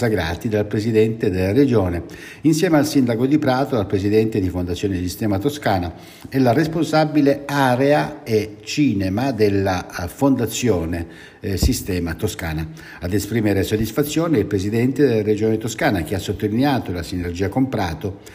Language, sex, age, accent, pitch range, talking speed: Italian, male, 60-79, native, 100-135 Hz, 135 wpm